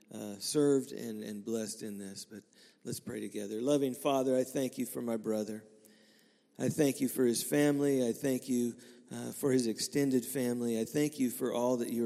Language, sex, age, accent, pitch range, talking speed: English, male, 40-59, American, 115-130 Hz, 200 wpm